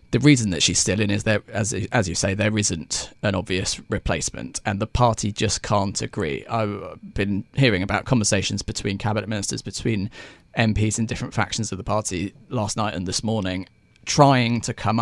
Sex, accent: male, British